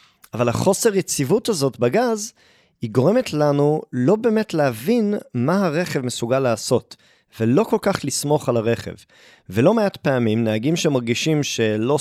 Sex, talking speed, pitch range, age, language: male, 135 wpm, 115-165 Hz, 30-49, Hebrew